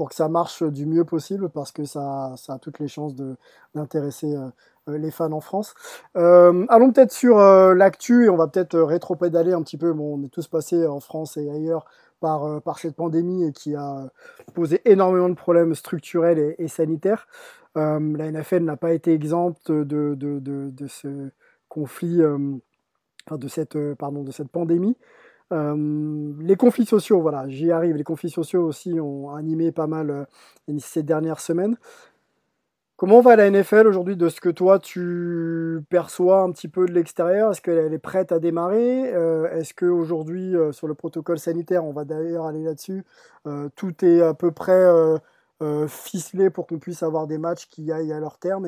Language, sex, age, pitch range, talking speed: French, male, 20-39, 150-175 Hz, 190 wpm